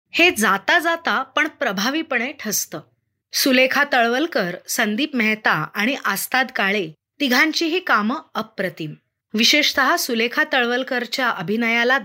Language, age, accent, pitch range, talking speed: Marathi, 20-39, native, 220-300 Hz, 105 wpm